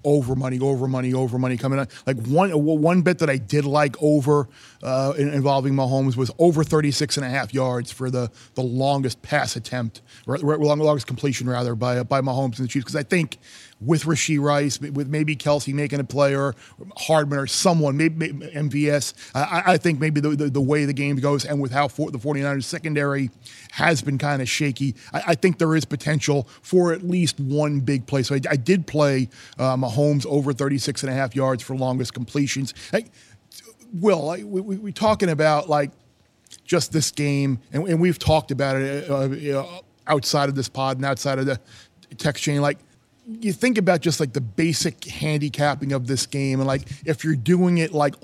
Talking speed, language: 205 wpm, English